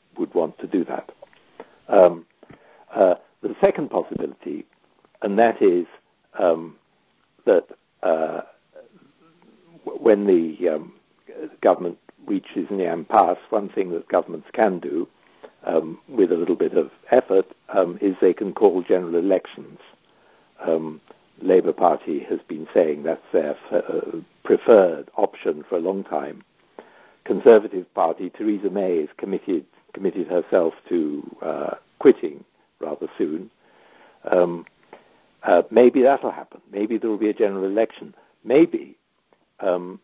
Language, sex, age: English, male, 60-79